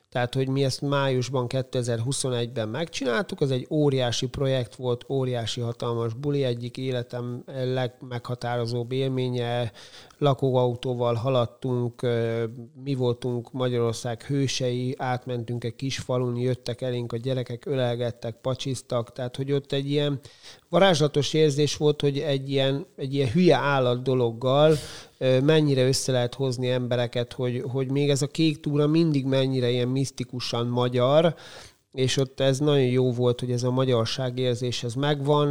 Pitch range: 125-140 Hz